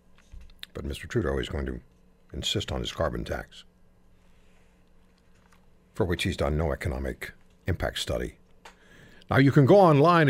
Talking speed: 140 wpm